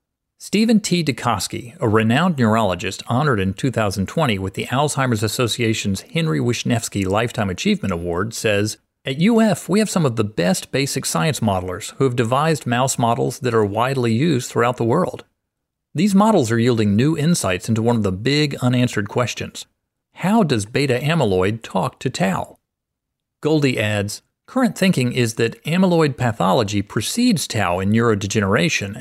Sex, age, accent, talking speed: male, 40-59, American, 155 wpm